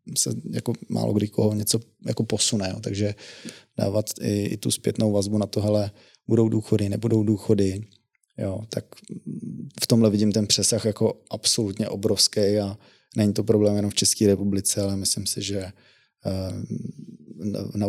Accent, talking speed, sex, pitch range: native, 150 wpm, male, 100-110 Hz